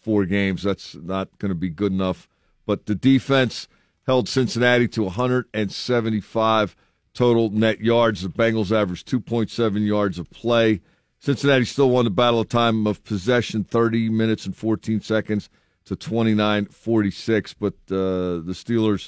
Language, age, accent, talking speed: English, 50-69, American, 145 wpm